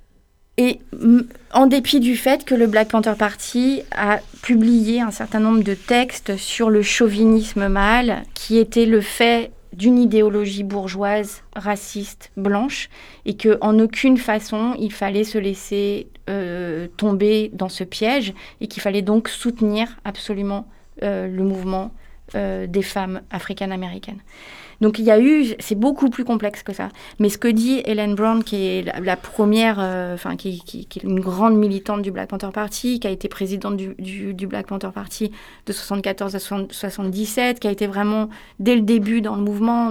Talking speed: 175 wpm